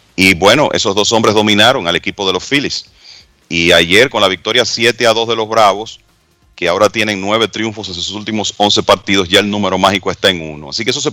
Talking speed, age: 225 wpm, 40-59